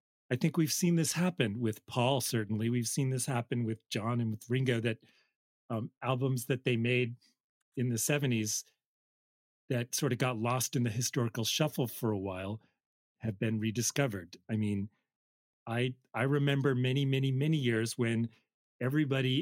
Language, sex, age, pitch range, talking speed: English, male, 40-59, 110-140 Hz, 165 wpm